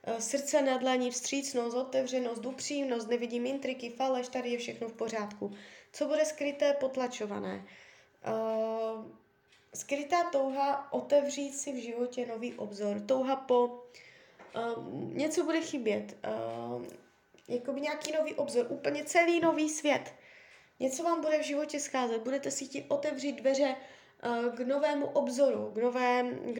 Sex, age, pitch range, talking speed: female, 20-39, 235-285 Hz, 125 wpm